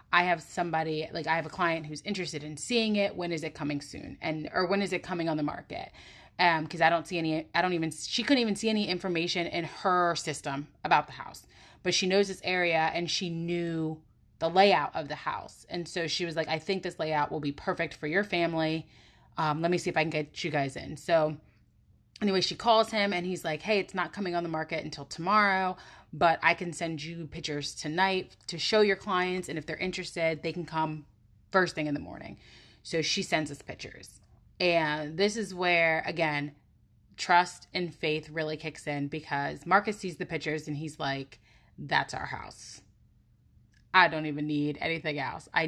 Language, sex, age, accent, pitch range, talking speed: English, female, 30-49, American, 150-180 Hz, 210 wpm